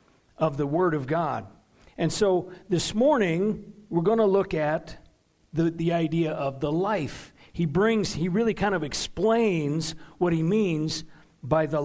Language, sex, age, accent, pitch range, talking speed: English, male, 50-69, American, 160-210 Hz, 160 wpm